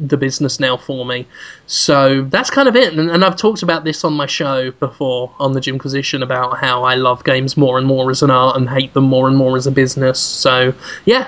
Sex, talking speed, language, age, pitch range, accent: male, 240 wpm, English, 20-39, 140-180 Hz, British